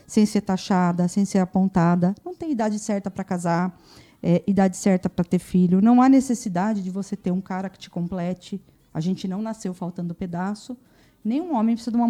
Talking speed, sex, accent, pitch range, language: 205 wpm, female, Brazilian, 190-240 Hz, Portuguese